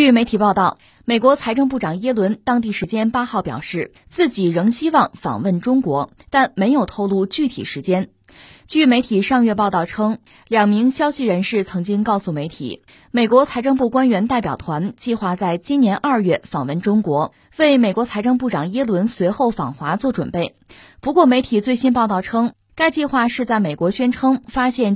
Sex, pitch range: female, 185-255 Hz